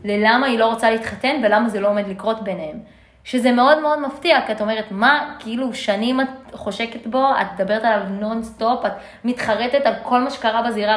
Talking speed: 190 wpm